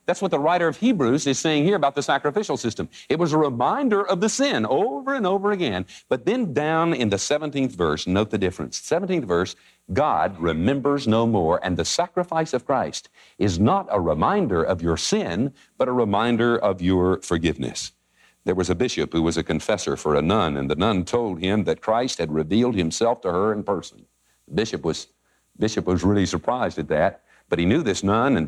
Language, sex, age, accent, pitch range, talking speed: English, male, 60-79, American, 90-135 Hz, 205 wpm